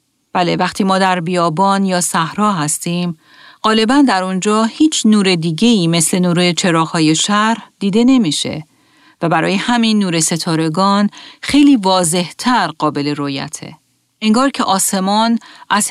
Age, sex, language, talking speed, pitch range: 40-59, female, Persian, 130 wpm, 165-210 Hz